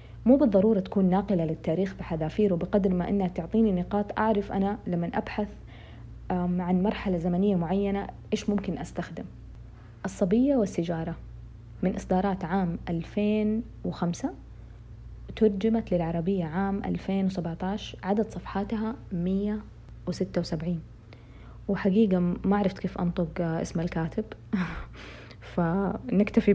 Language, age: Arabic, 30-49